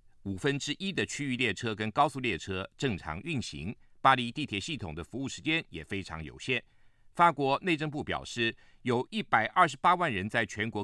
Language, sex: Chinese, male